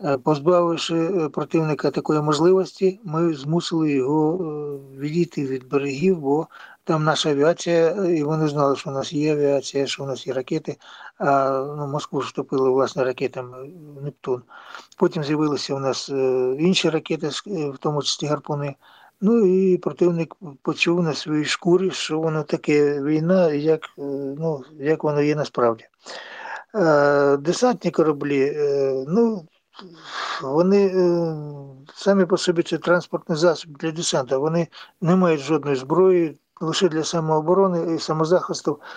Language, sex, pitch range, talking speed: Ukrainian, male, 145-175 Hz, 130 wpm